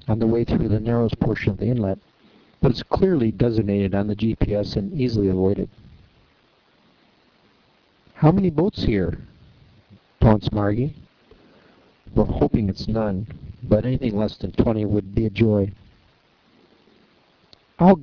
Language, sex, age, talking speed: English, male, 50-69, 135 wpm